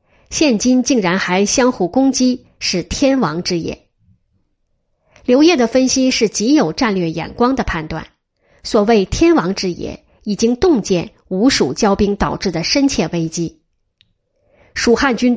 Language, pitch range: Chinese, 190-265 Hz